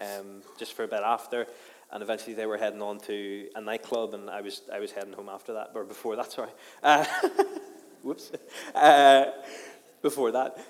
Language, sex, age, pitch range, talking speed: English, male, 20-39, 105-135 Hz, 185 wpm